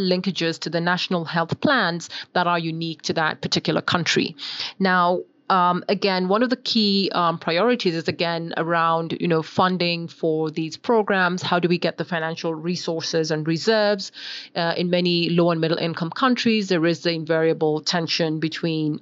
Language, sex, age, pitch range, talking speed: English, female, 30-49, 165-185 Hz, 165 wpm